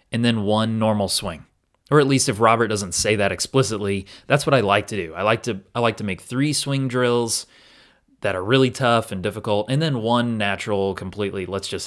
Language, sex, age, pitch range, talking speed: English, male, 30-49, 105-130 Hz, 215 wpm